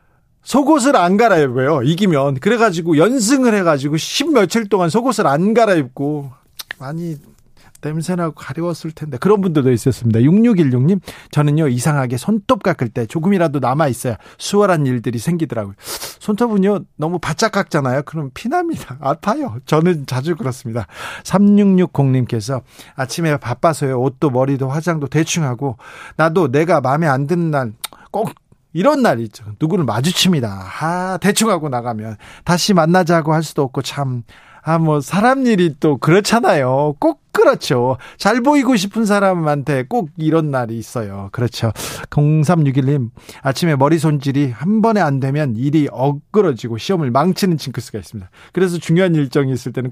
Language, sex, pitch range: Korean, male, 130-180 Hz